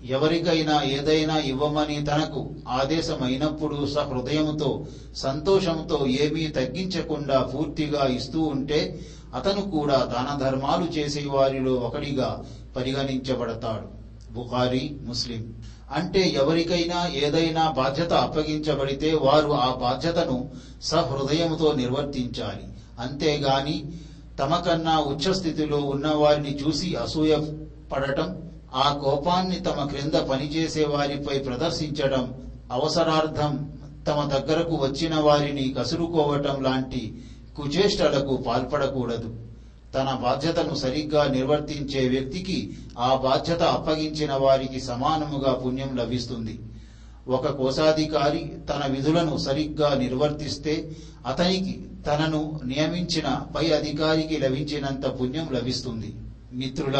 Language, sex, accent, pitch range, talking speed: Telugu, male, native, 130-155 Hz, 80 wpm